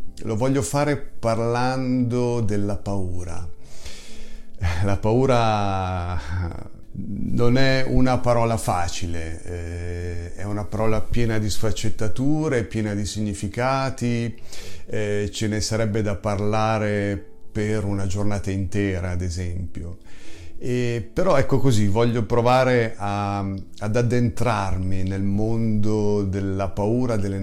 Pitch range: 100-120 Hz